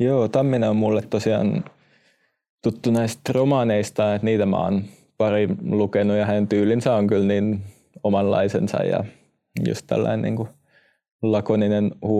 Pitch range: 105-110 Hz